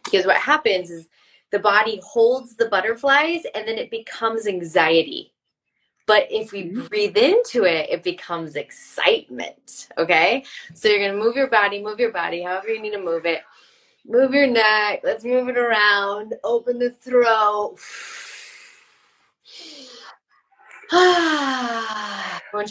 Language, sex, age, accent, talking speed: English, female, 20-39, American, 135 wpm